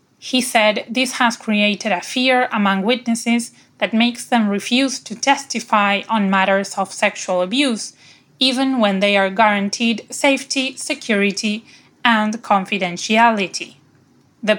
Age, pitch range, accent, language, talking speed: 20-39, 200-250 Hz, Spanish, English, 125 wpm